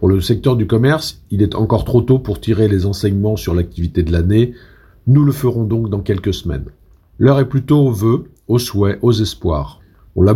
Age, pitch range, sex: 50-69, 95-120 Hz, male